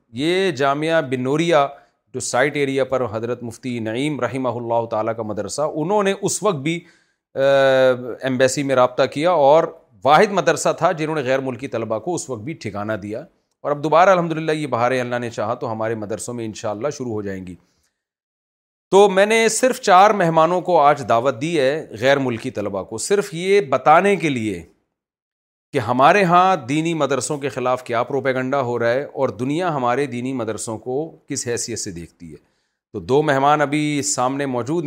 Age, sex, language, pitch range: 40-59, male, Urdu, 120-155 Hz